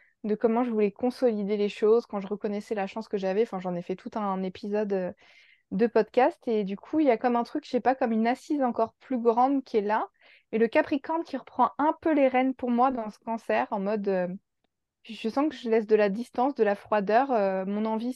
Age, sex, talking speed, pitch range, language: 20-39, female, 250 wpm, 205-260 Hz, French